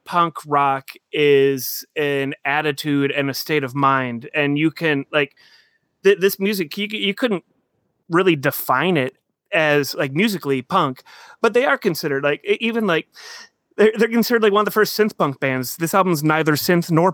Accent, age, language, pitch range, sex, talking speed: American, 30-49, English, 145-185 Hz, male, 180 wpm